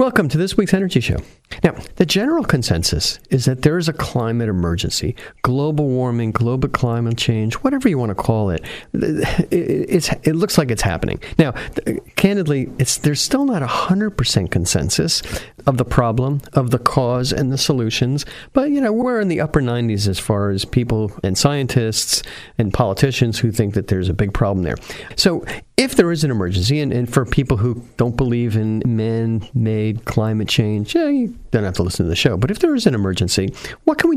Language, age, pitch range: English, 50-69, 110-150 Hz